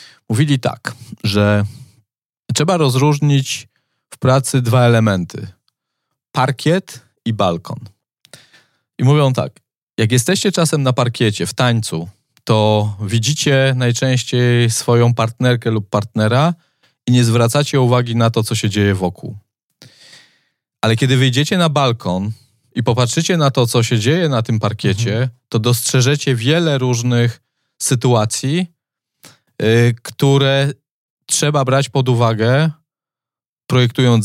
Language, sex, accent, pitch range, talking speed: Polish, male, native, 115-140 Hz, 115 wpm